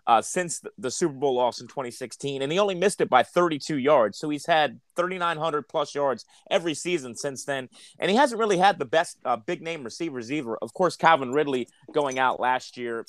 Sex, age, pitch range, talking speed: male, 30-49, 125-160 Hz, 210 wpm